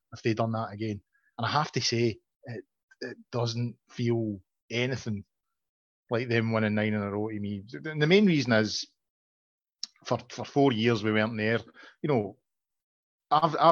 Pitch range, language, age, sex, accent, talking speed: 110-135 Hz, English, 30-49, male, British, 170 wpm